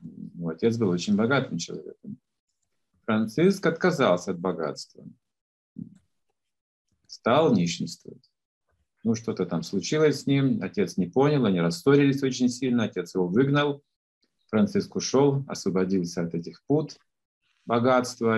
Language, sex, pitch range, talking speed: Russian, male, 115-165 Hz, 115 wpm